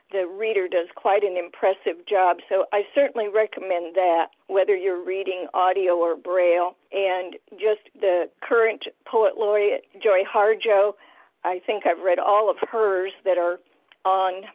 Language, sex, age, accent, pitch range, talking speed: English, female, 50-69, American, 185-215 Hz, 150 wpm